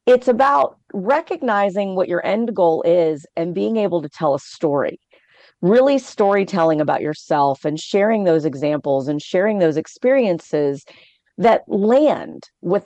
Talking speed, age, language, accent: 140 wpm, 40-59, English, American